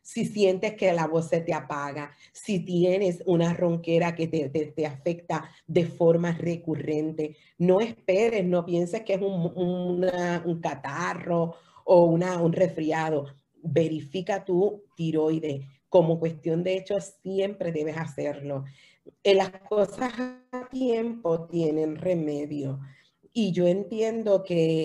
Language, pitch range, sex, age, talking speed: Spanish, 155-180 Hz, female, 40-59, 135 wpm